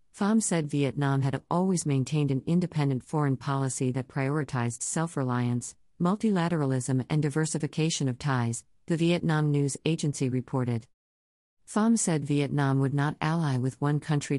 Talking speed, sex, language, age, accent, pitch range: 135 wpm, female, English, 50-69, American, 130-155 Hz